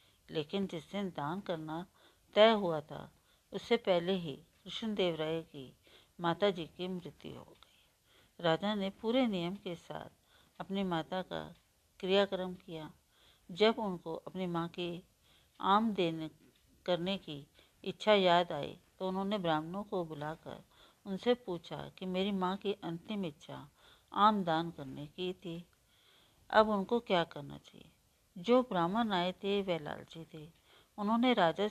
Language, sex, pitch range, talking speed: Hindi, female, 165-200 Hz, 140 wpm